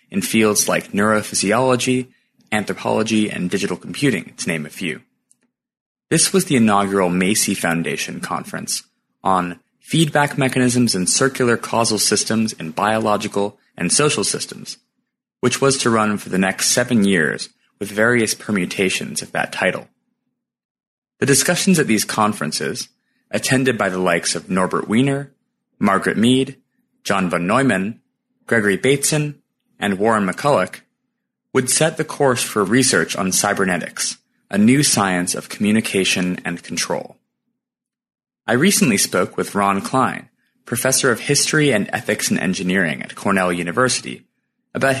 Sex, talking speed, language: male, 135 wpm, English